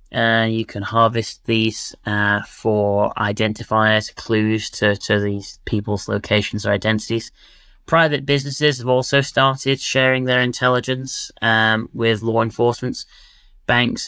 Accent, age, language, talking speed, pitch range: British, 20-39, English, 130 wpm, 100-115 Hz